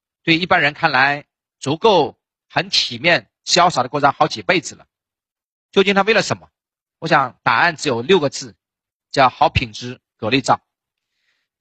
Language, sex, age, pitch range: Chinese, male, 40-59, 125-175 Hz